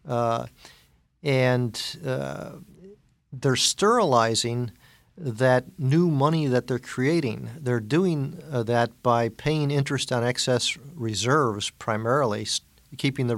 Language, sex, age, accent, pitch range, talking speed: English, male, 50-69, American, 120-145 Hz, 110 wpm